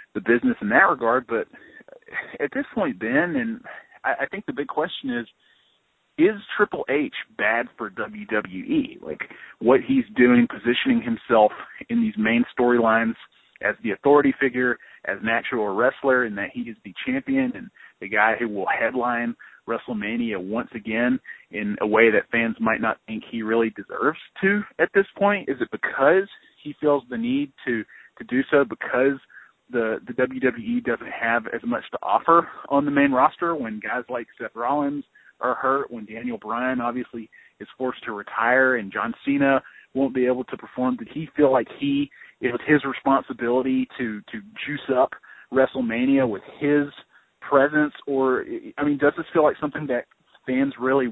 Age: 40-59